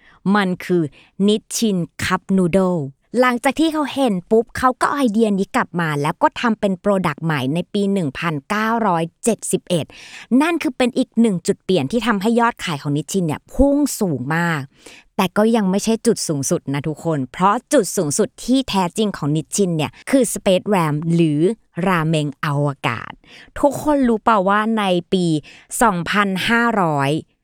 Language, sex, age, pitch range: Thai, female, 20-39, 160-220 Hz